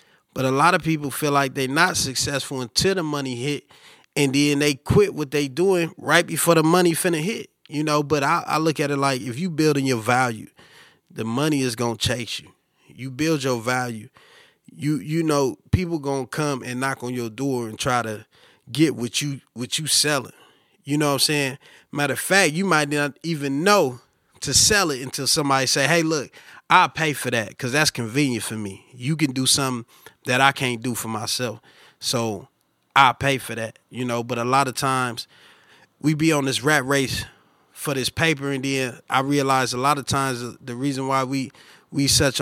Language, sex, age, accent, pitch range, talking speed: English, male, 30-49, American, 125-150 Hz, 205 wpm